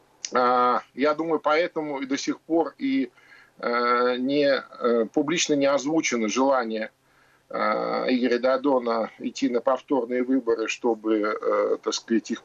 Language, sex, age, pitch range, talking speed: Russian, male, 50-69, 120-175 Hz, 110 wpm